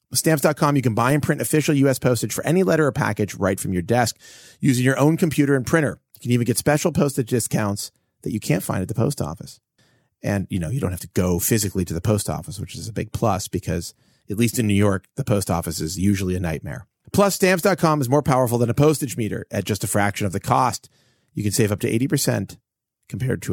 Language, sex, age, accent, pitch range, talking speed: English, male, 30-49, American, 105-140 Hz, 240 wpm